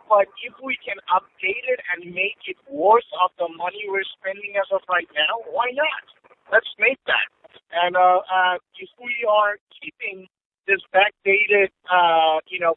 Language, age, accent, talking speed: English, 50-69, American, 170 wpm